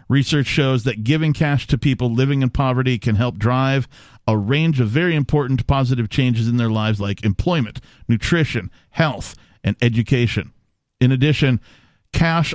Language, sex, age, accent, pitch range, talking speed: English, male, 50-69, American, 110-140 Hz, 155 wpm